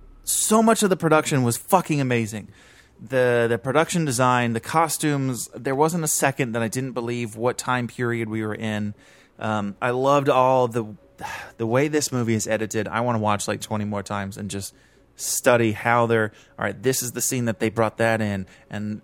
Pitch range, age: 110-135 Hz, 30-49